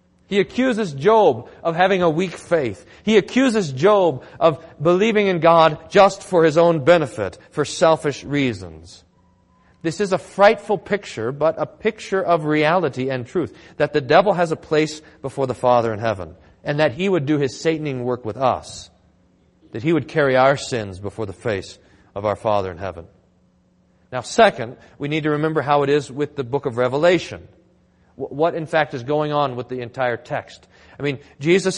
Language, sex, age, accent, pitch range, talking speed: English, male, 40-59, American, 130-180 Hz, 185 wpm